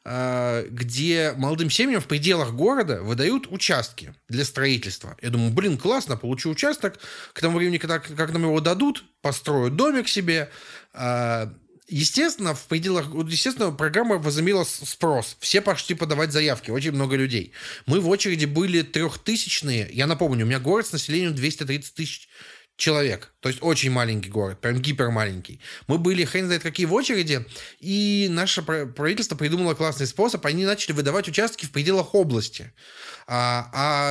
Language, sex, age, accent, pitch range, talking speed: Russian, male, 30-49, native, 130-175 Hz, 150 wpm